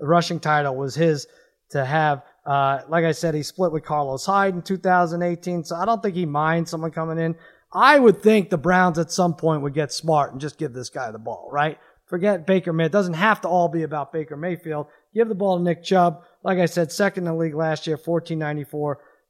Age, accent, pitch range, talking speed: 30-49, American, 150-195 Hz, 230 wpm